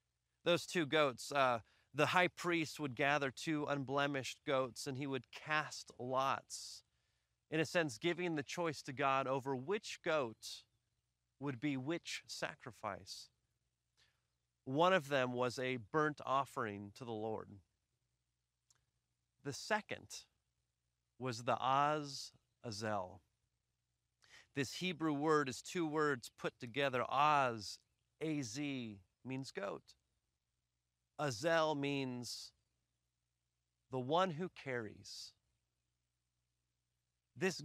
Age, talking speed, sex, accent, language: 30-49, 110 wpm, male, American, English